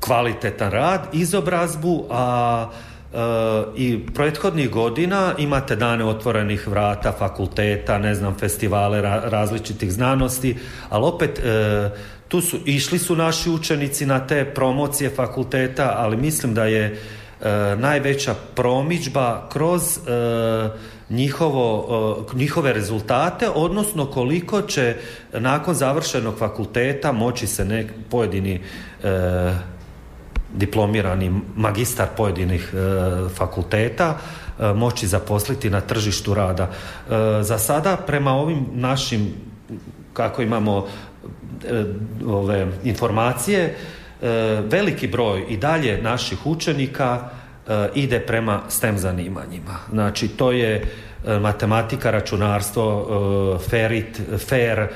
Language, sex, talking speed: Croatian, male, 105 wpm